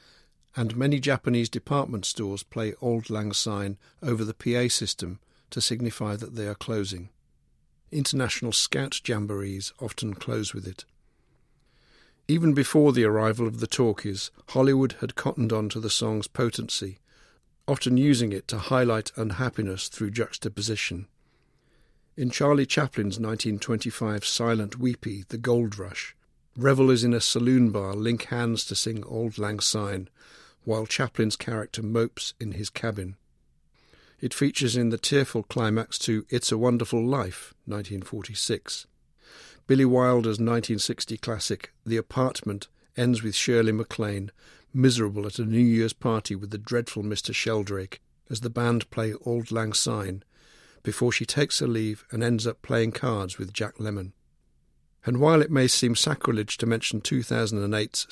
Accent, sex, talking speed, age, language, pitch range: British, male, 145 wpm, 50-69, English, 105-120 Hz